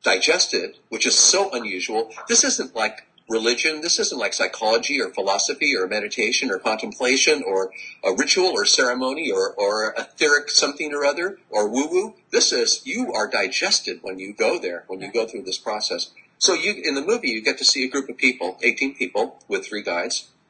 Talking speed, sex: 190 wpm, male